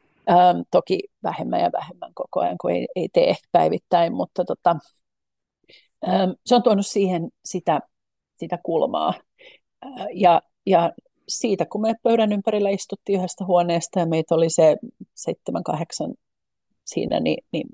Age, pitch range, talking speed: 40-59, 165-210 Hz, 140 wpm